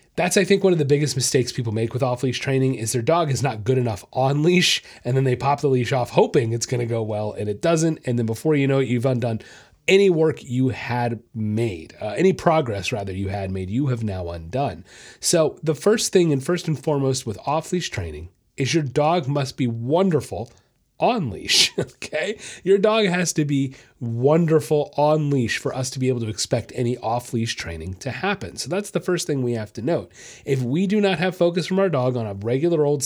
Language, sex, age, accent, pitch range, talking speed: English, male, 30-49, American, 115-160 Hz, 220 wpm